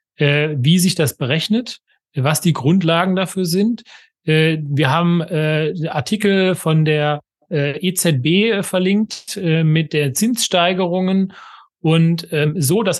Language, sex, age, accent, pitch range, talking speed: German, male, 40-59, German, 145-175 Hz, 100 wpm